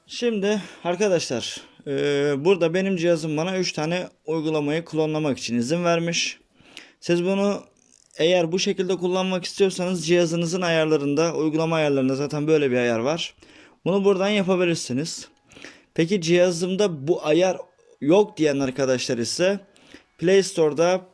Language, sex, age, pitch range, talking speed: Turkish, male, 30-49, 140-185 Hz, 120 wpm